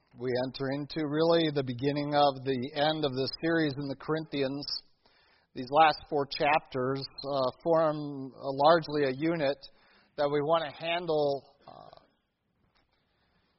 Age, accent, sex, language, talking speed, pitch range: 40-59, American, male, English, 135 wpm, 145-170 Hz